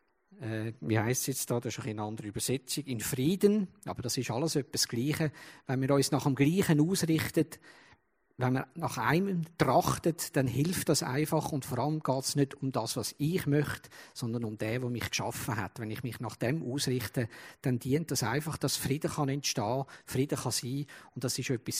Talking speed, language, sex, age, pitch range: 205 wpm, German, male, 50-69, 120-150 Hz